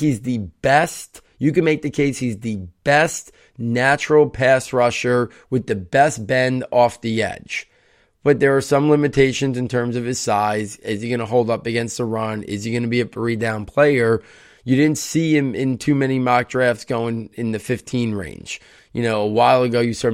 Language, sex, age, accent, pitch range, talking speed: English, male, 20-39, American, 110-130 Hz, 205 wpm